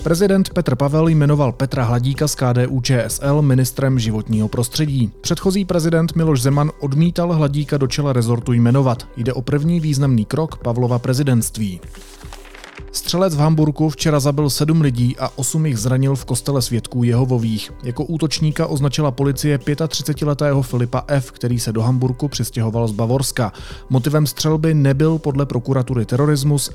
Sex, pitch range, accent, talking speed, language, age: male, 120-150 Hz, native, 145 wpm, Czech, 30-49